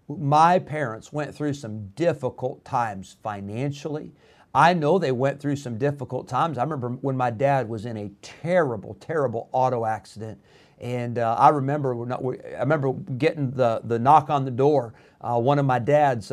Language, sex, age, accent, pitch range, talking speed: English, male, 50-69, American, 120-150 Hz, 180 wpm